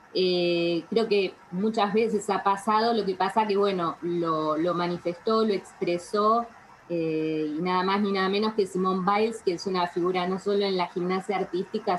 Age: 20-39